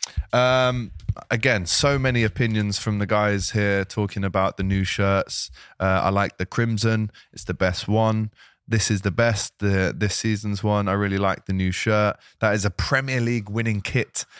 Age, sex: 20-39, male